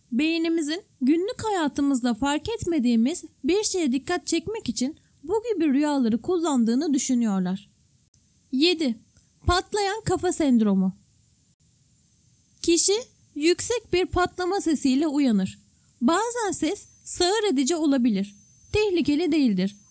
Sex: female